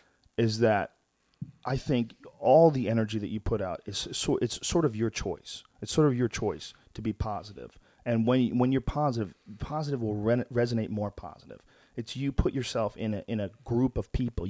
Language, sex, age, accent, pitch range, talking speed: English, male, 40-59, American, 105-130 Hz, 200 wpm